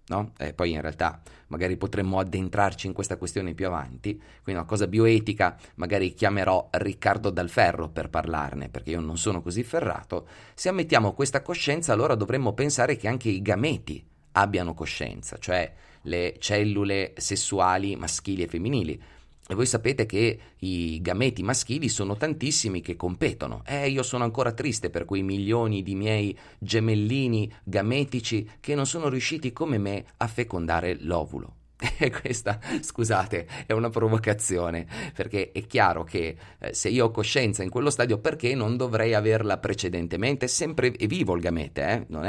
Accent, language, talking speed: native, Italian, 160 wpm